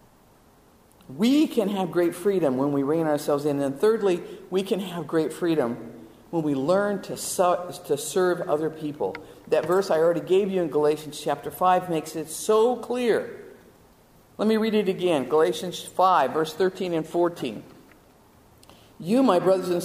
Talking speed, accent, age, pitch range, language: 165 wpm, American, 50-69, 160-240 Hz, English